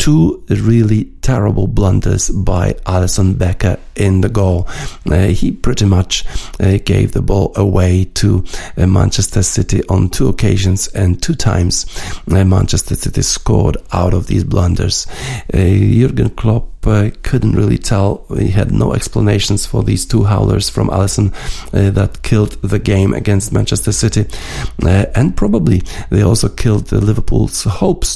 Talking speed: 150 wpm